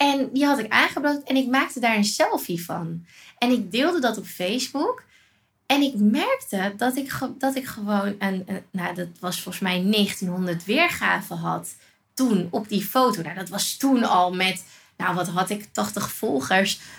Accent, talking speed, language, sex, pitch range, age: Dutch, 185 wpm, Dutch, female, 200-270 Hz, 20-39